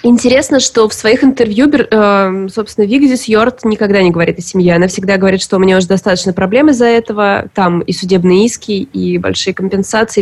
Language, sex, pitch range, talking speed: Russian, female, 190-230 Hz, 180 wpm